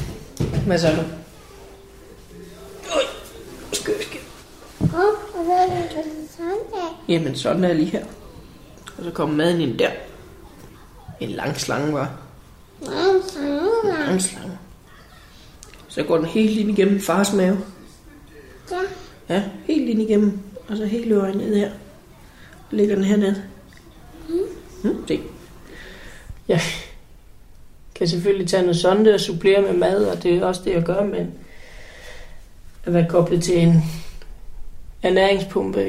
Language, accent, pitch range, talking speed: Danish, native, 160-200 Hz, 130 wpm